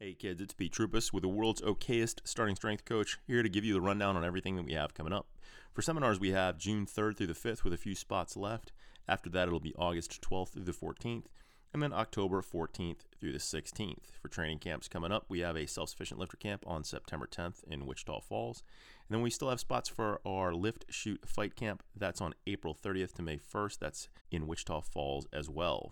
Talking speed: 225 wpm